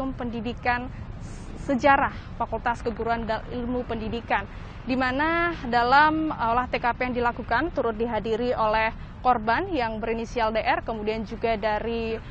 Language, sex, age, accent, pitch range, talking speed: Indonesian, female, 20-39, native, 235-285 Hz, 110 wpm